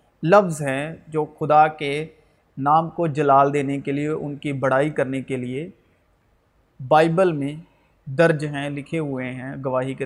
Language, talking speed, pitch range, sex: Urdu, 155 wpm, 145-190 Hz, male